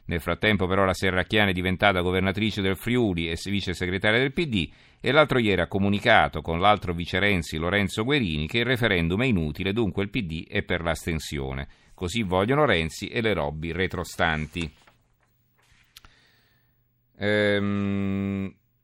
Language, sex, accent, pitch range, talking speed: Italian, male, native, 90-110 Hz, 145 wpm